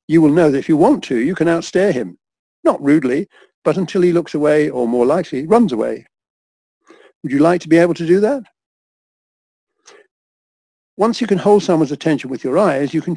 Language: English